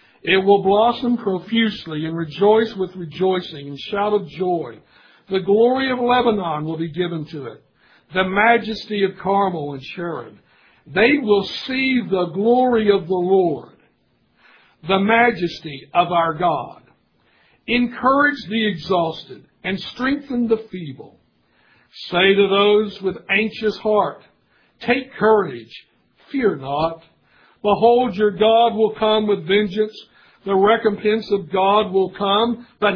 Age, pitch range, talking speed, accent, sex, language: 60-79, 185-220 Hz, 130 wpm, American, male, English